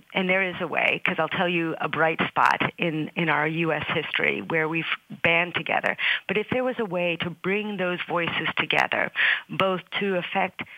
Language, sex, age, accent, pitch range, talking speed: English, female, 40-59, American, 165-205 Hz, 195 wpm